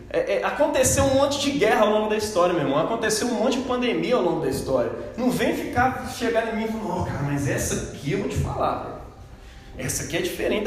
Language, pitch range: Portuguese, 180-245 Hz